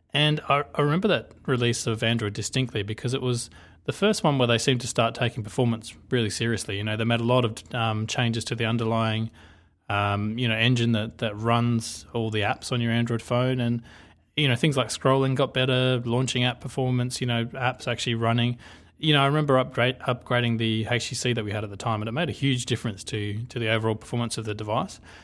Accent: Australian